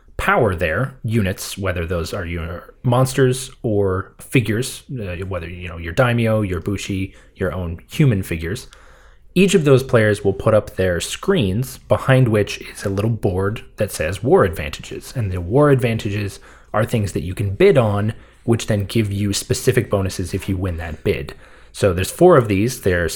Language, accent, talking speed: English, American, 180 wpm